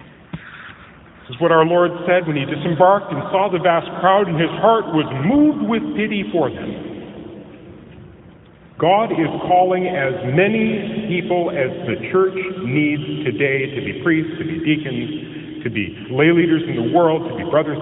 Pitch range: 120-180 Hz